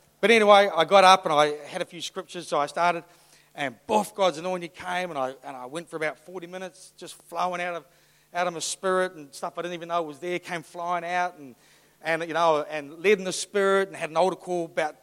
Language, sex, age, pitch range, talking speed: English, male, 40-59, 150-180 Hz, 250 wpm